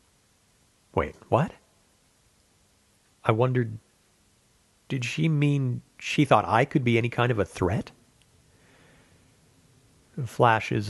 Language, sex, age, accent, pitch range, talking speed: English, male, 40-59, American, 100-130 Hz, 100 wpm